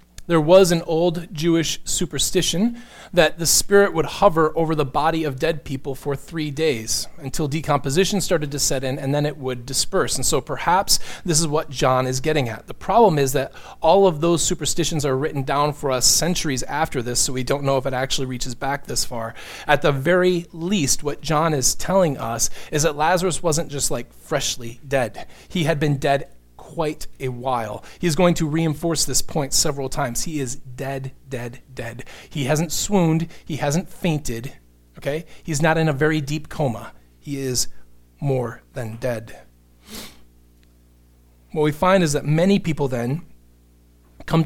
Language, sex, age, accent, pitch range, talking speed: English, male, 30-49, American, 130-165 Hz, 180 wpm